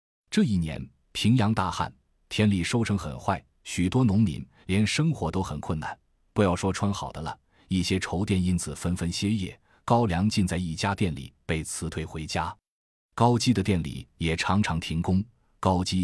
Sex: male